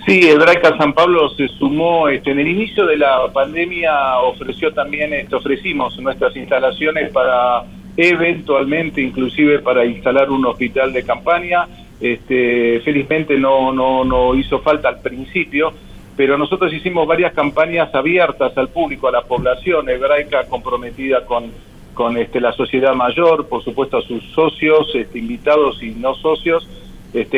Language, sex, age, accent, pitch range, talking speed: Spanish, male, 50-69, Argentinian, 125-165 Hz, 145 wpm